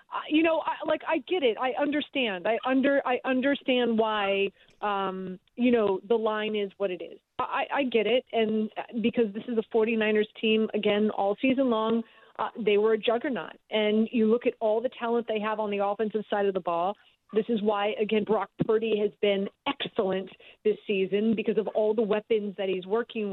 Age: 40-59